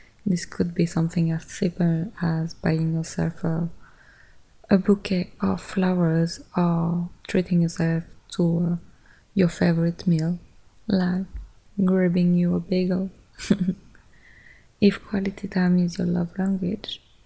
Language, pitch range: English, 170-185 Hz